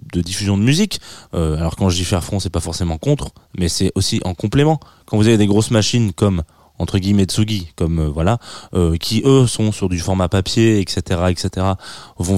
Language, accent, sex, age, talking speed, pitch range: French, French, male, 20-39, 215 wpm, 95-125 Hz